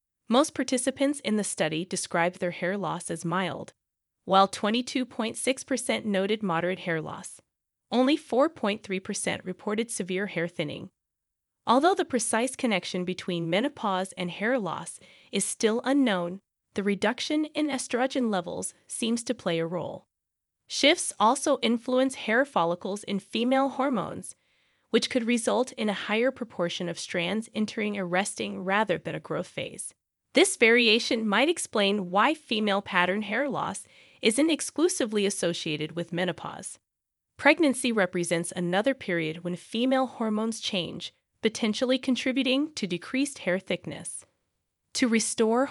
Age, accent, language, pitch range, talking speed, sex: 20-39, American, English, 190-260 Hz, 130 wpm, female